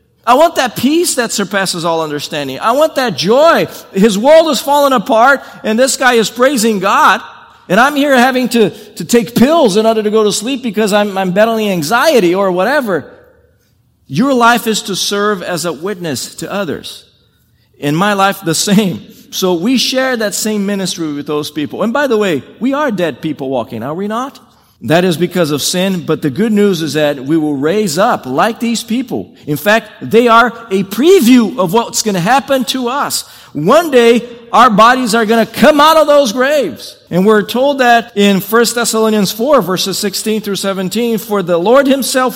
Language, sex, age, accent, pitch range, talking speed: English, male, 50-69, American, 190-245 Hz, 195 wpm